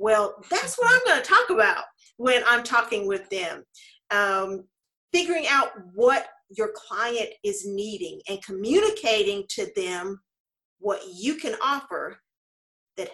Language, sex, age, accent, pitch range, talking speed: English, female, 40-59, American, 215-315 Hz, 135 wpm